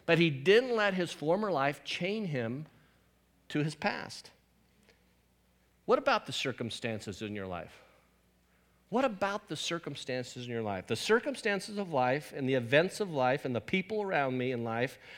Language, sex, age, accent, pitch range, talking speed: English, male, 50-69, American, 125-190 Hz, 165 wpm